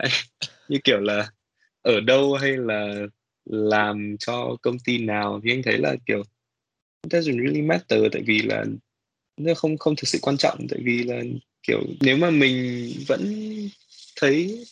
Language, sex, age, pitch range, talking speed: Vietnamese, male, 20-39, 105-130 Hz, 160 wpm